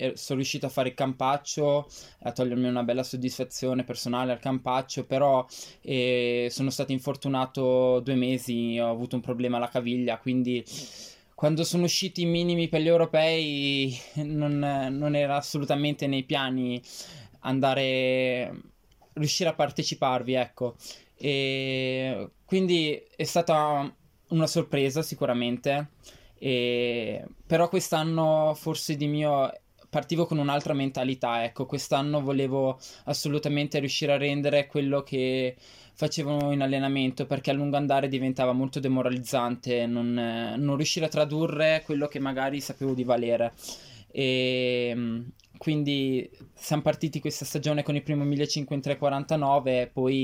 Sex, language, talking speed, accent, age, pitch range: male, Italian, 125 wpm, native, 20-39, 125-150 Hz